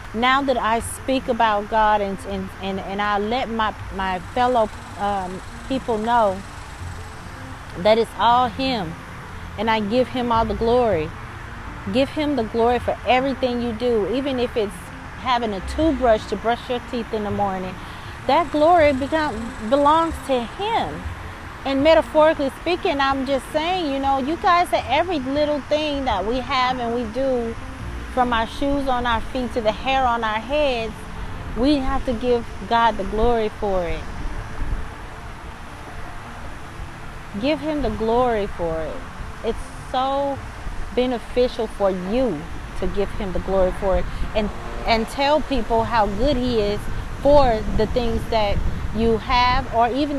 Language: English